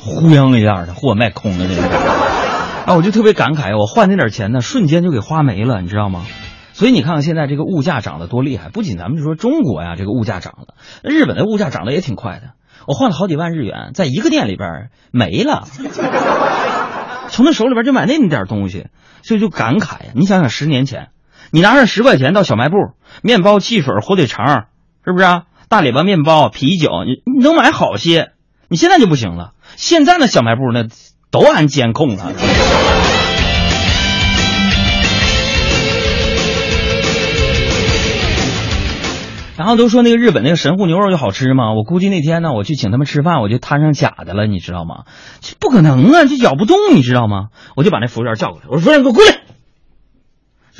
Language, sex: Chinese, male